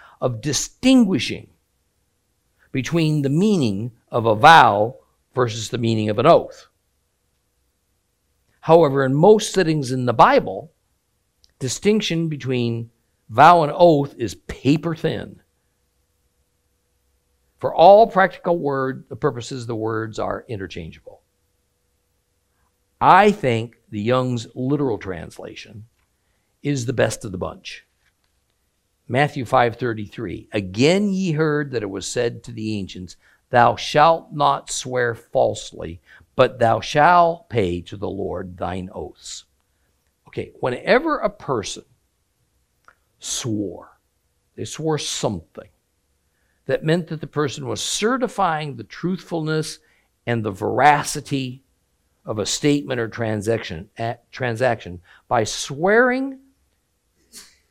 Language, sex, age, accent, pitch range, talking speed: English, male, 50-69, American, 95-150 Hz, 110 wpm